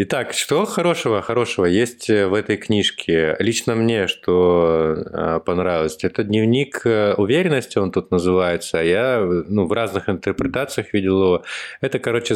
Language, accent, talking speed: Russian, native, 125 wpm